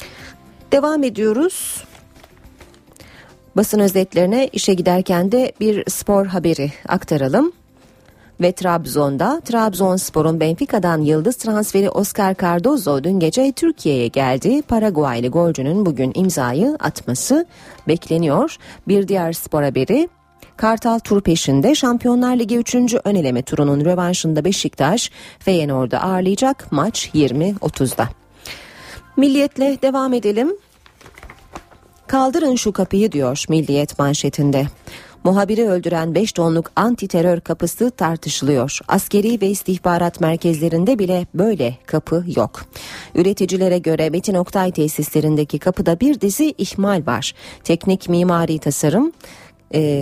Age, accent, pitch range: 40-59, native, 150-220 Hz